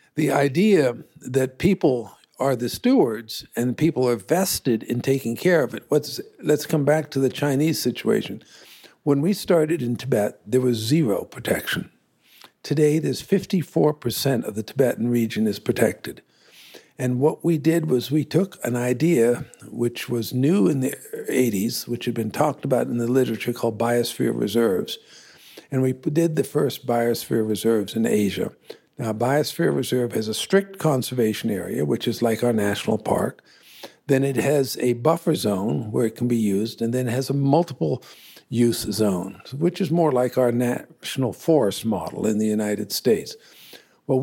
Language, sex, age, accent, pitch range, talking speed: English, male, 60-79, American, 115-150 Hz, 165 wpm